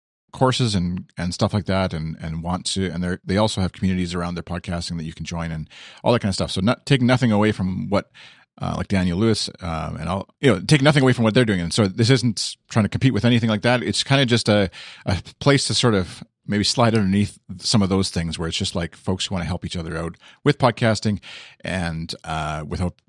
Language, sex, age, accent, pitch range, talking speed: English, male, 40-59, American, 85-115 Hz, 250 wpm